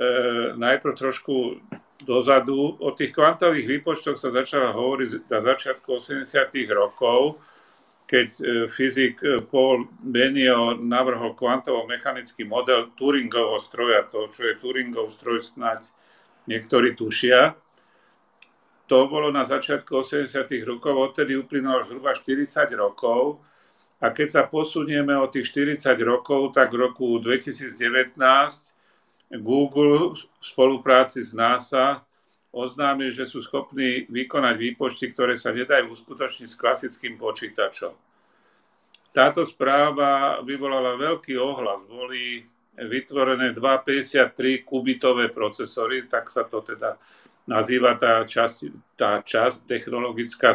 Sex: male